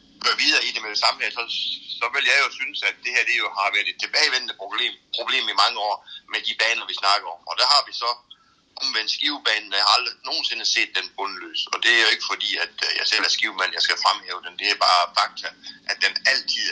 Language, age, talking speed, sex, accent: Danish, 60-79, 250 wpm, male, native